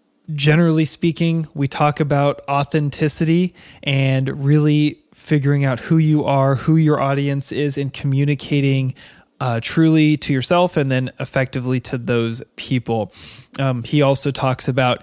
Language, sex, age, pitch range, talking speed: English, male, 20-39, 125-145 Hz, 135 wpm